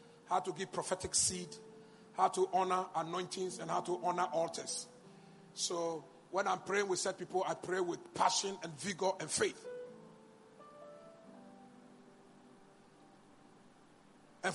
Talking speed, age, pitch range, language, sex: 125 wpm, 50-69, 180-240 Hz, English, male